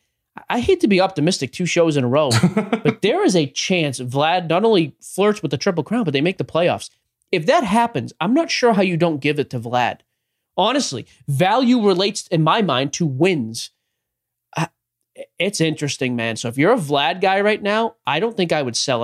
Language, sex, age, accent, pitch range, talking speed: English, male, 30-49, American, 125-180 Hz, 210 wpm